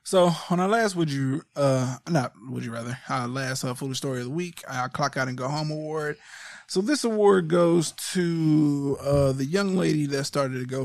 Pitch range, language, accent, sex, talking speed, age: 125-155 Hz, English, American, male, 215 wpm, 20-39